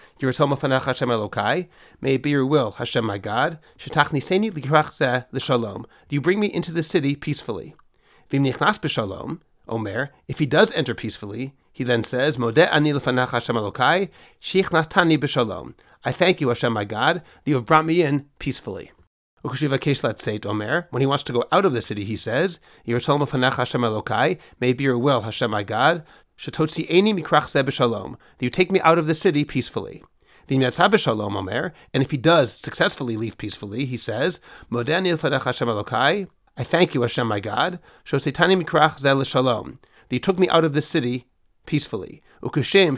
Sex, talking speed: male, 180 wpm